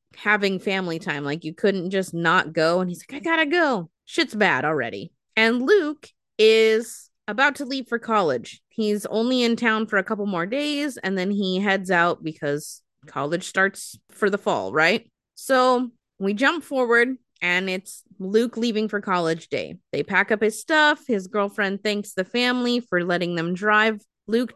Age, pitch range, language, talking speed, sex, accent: 20-39, 185-245 Hz, English, 180 wpm, female, American